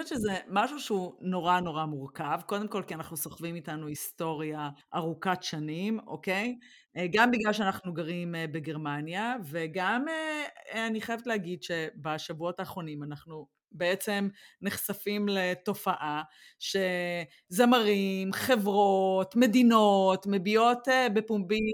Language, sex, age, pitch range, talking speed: Hebrew, female, 30-49, 175-225 Hz, 100 wpm